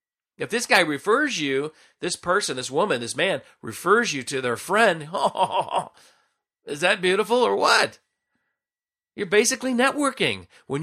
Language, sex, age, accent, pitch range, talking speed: English, male, 40-59, American, 145-235 Hz, 140 wpm